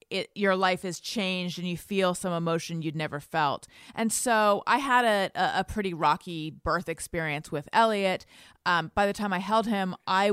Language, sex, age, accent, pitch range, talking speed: English, female, 30-49, American, 185-250 Hz, 190 wpm